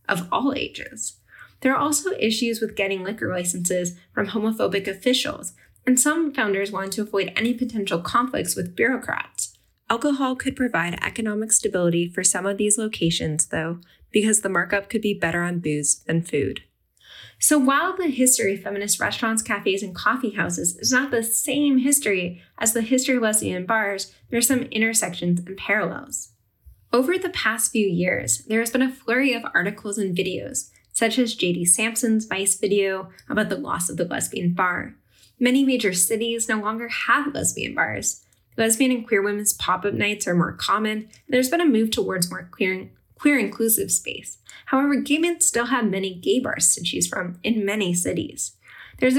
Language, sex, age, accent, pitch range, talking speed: English, female, 10-29, American, 190-255 Hz, 175 wpm